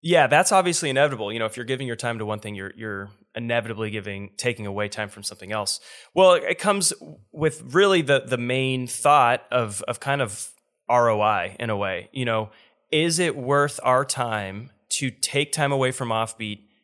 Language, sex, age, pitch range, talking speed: English, male, 20-39, 105-130 Hz, 190 wpm